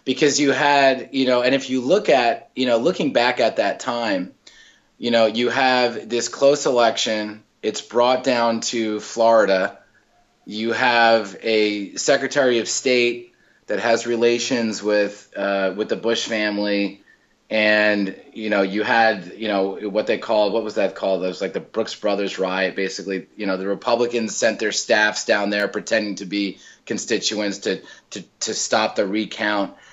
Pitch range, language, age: 100-125 Hz, English, 30-49